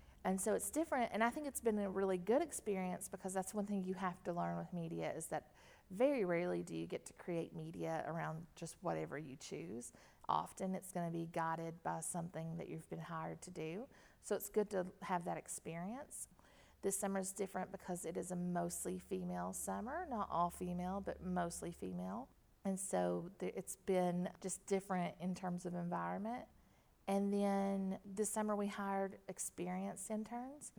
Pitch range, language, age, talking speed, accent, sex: 170-200 Hz, English, 40-59, 185 wpm, American, female